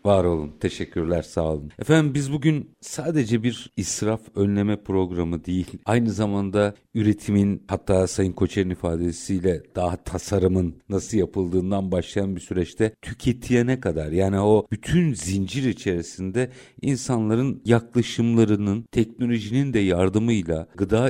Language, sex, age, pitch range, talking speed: Turkish, male, 50-69, 90-120 Hz, 115 wpm